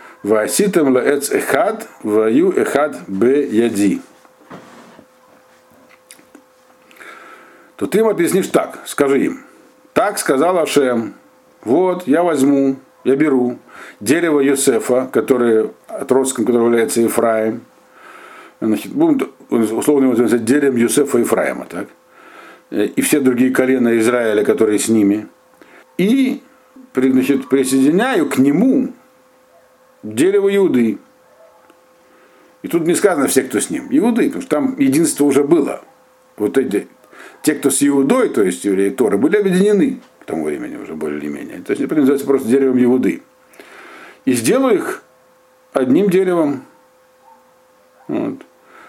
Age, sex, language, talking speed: 50-69, male, Russian, 115 wpm